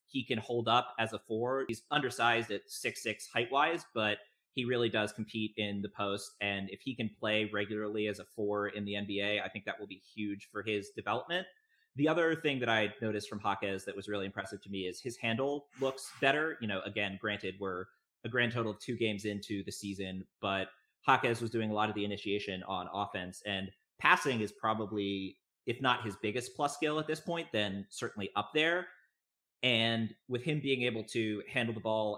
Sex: male